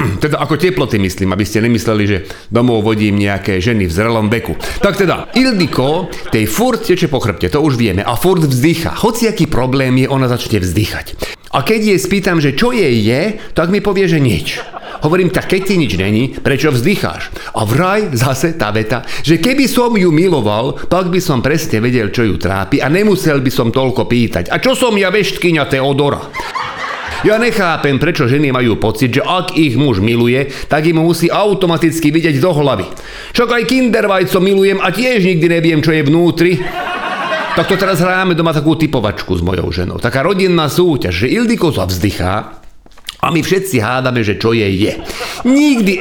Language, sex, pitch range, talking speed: Slovak, male, 115-185 Hz, 185 wpm